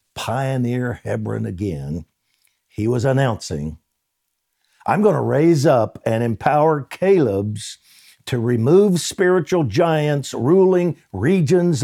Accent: American